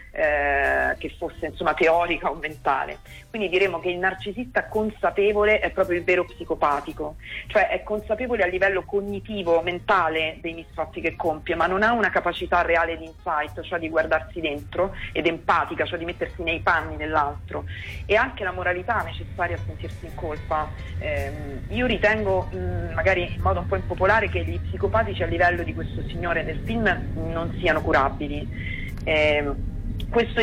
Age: 40-59